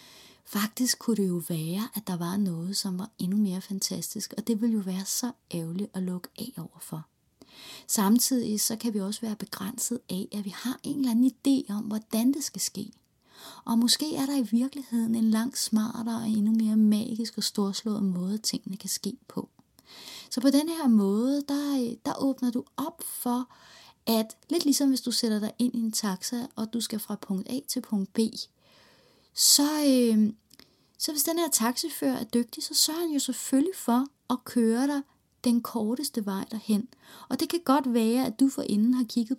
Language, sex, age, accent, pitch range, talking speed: Danish, female, 30-49, native, 210-265 Hz, 195 wpm